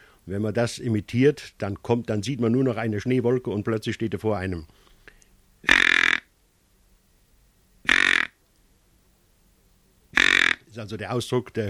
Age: 60-79